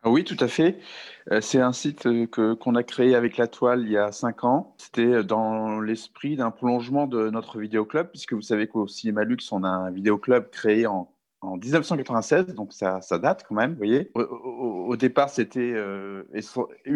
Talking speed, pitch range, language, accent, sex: 195 wpm, 100-125 Hz, French, French, male